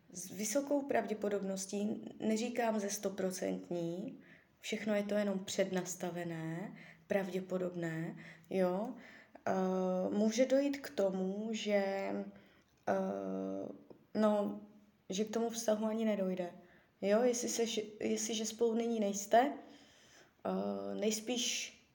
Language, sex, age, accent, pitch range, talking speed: Czech, female, 20-39, native, 190-230 Hz, 80 wpm